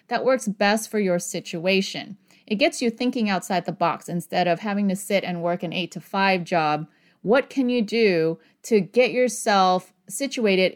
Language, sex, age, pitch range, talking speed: English, female, 30-49, 180-235 Hz, 185 wpm